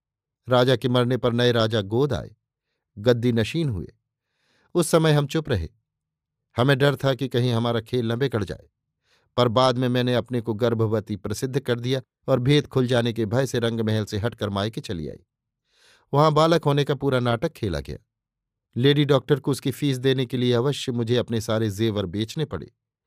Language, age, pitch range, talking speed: Hindi, 50-69, 115-135 Hz, 190 wpm